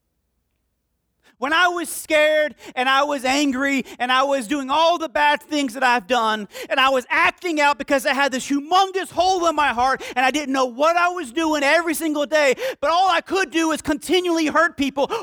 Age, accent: 40-59, American